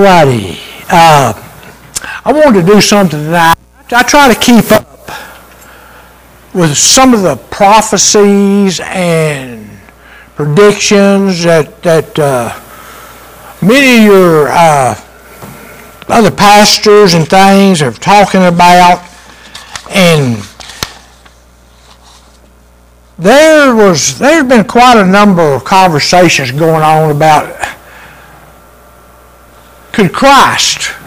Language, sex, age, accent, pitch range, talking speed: English, male, 60-79, American, 155-210 Hz, 95 wpm